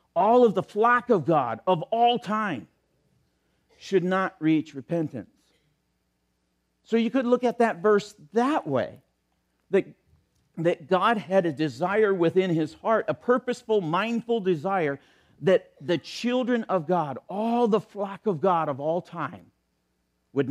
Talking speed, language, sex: 145 wpm, English, male